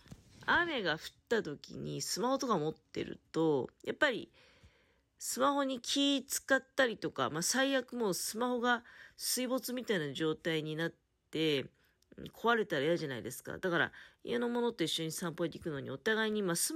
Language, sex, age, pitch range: Japanese, female, 40-59, 160-255 Hz